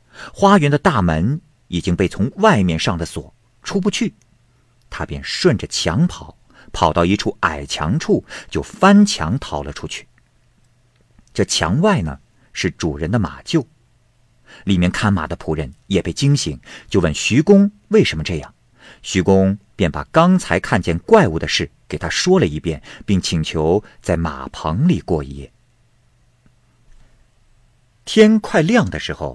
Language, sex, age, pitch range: Chinese, male, 50-69, 85-125 Hz